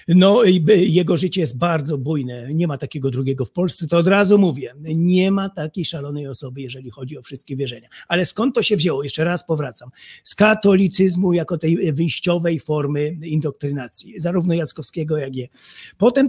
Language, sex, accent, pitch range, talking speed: Polish, male, native, 145-185 Hz, 175 wpm